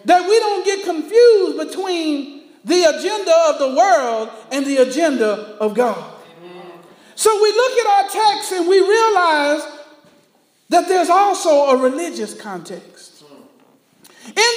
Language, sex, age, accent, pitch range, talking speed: English, male, 50-69, American, 240-355 Hz, 130 wpm